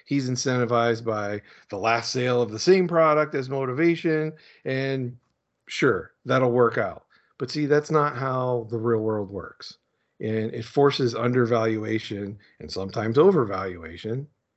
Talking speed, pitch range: 135 wpm, 115-145 Hz